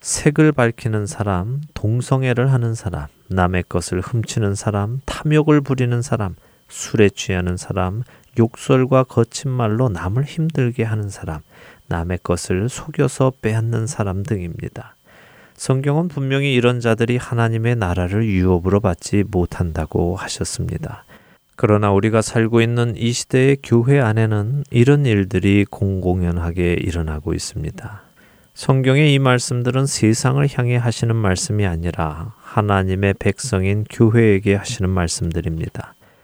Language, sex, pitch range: Korean, male, 95-125 Hz